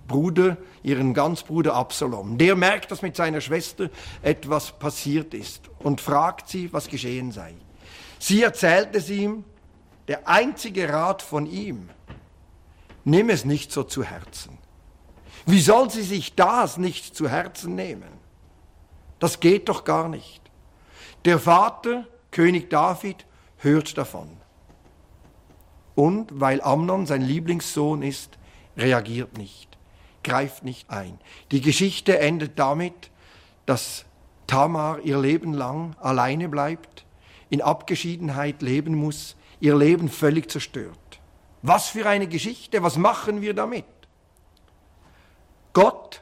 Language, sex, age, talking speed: German, male, 50-69, 120 wpm